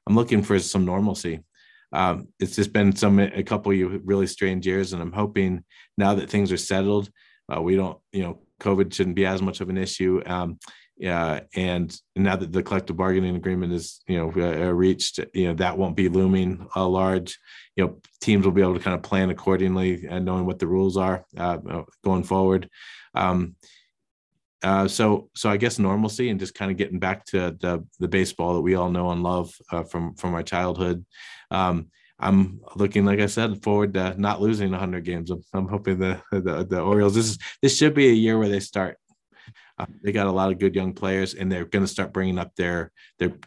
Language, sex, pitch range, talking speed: English, male, 90-100 Hz, 215 wpm